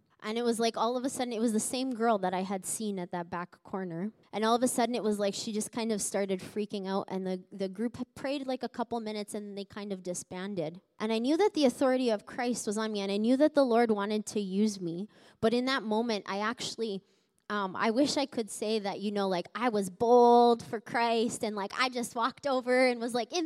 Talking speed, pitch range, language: 265 wpm, 195-235 Hz, English